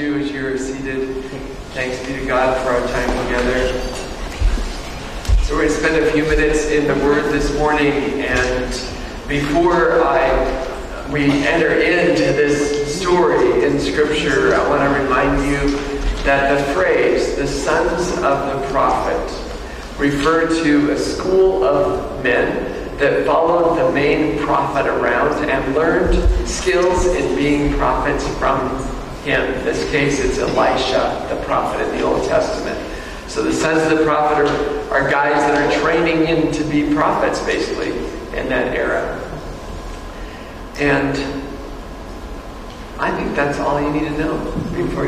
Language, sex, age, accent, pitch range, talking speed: English, male, 40-59, American, 130-155 Hz, 145 wpm